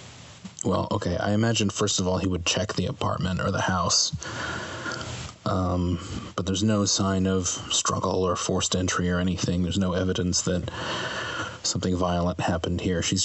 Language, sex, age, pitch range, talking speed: English, male, 30-49, 90-110 Hz, 165 wpm